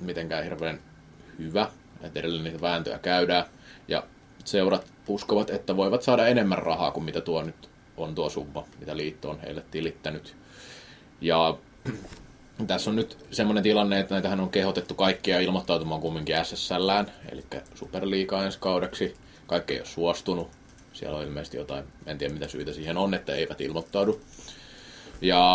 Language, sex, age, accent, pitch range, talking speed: Finnish, male, 30-49, native, 85-105 Hz, 150 wpm